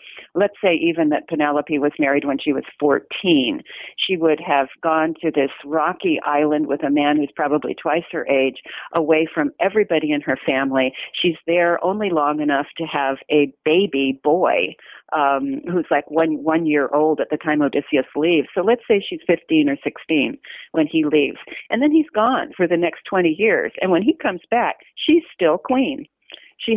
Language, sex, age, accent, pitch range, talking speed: English, female, 40-59, American, 150-185 Hz, 185 wpm